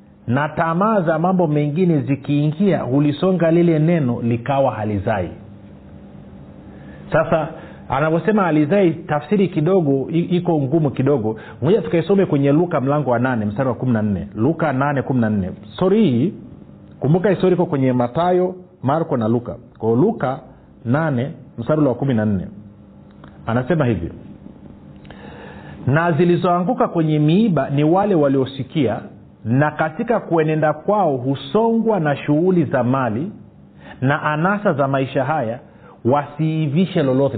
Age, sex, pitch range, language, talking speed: 40-59, male, 120-175 Hz, Swahili, 115 wpm